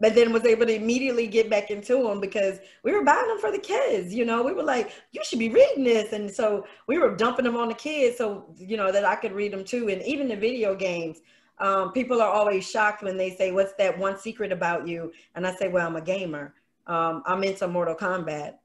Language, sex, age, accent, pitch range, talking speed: English, female, 30-49, American, 175-215 Hz, 250 wpm